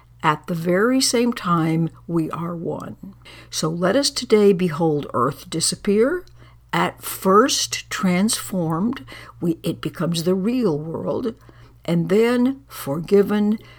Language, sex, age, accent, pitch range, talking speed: English, female, 60-79, American, 155-195 Hz, 115 wpm